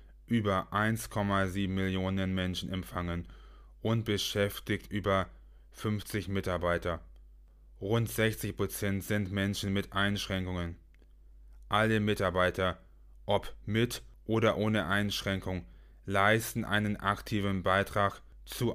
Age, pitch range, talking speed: 20-39, 90-105 Hz, 90 wpm